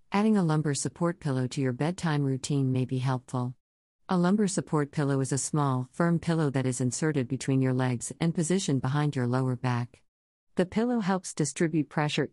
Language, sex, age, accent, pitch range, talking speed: English, female, 50-69, American, 130-160 Hz, 185 wpm